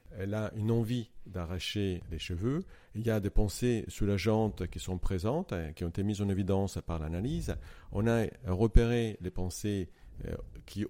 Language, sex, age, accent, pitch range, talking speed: French, male, 50-69, French, 90-115 Hz, 165 wpm